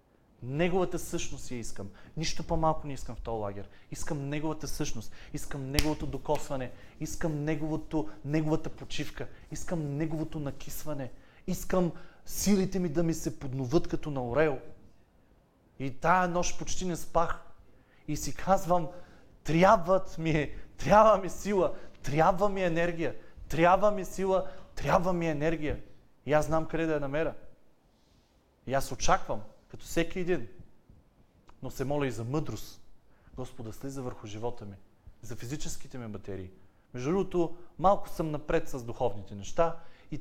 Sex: male